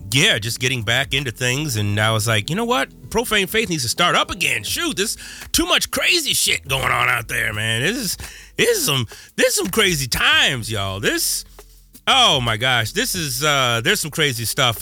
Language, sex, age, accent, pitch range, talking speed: English, male, 30-49, American, 110-155 Hz, 215 wpm